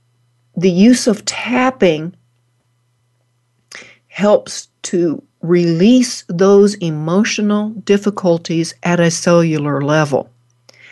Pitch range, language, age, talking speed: 135-205 Hz, English, 60-79, 75 wpm